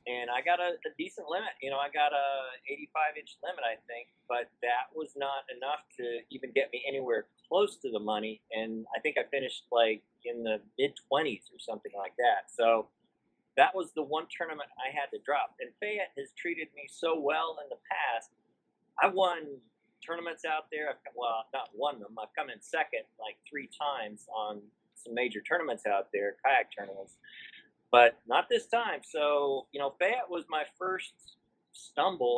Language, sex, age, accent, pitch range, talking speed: English, male, 30-49, American, 125-175 Hz, 185 wpm